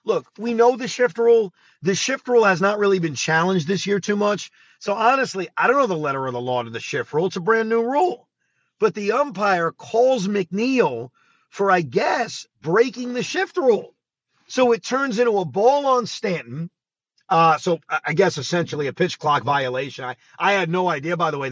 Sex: male